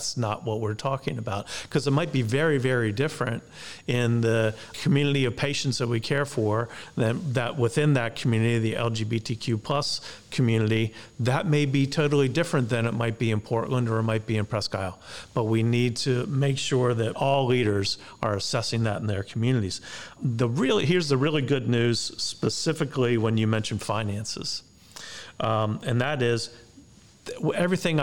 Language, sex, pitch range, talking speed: English, male, 110-135 Hz, 175 wpm